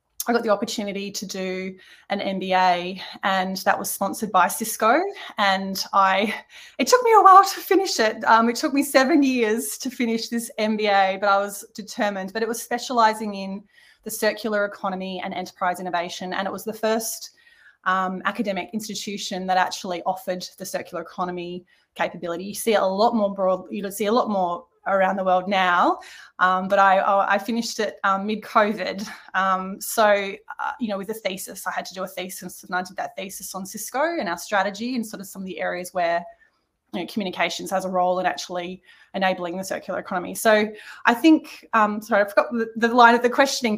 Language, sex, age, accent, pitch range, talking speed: English, female, 20-39, Australian, 190-230 Hz, 195 wpm